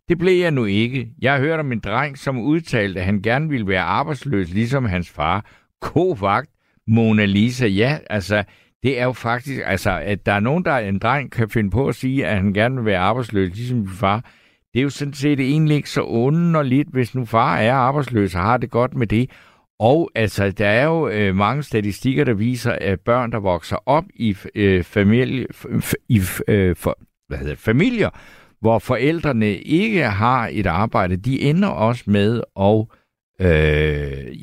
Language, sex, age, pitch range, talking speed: Danish, male, 60-79, 105-145 Hz, 200 wpm